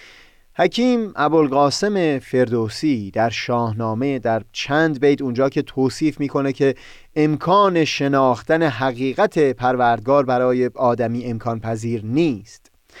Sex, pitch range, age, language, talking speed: male, 120-165 Hz, 30-49, Persian, 100 wpm